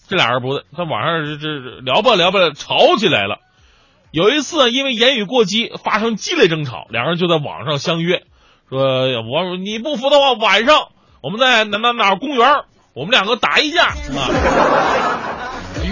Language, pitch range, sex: Chinese, 140-215 Hz, male